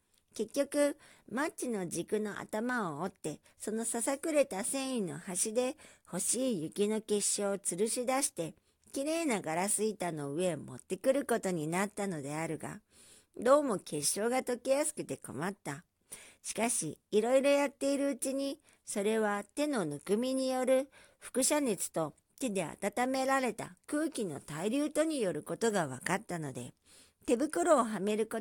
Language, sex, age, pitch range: Japanese, male, 50-69, 175-265 Hz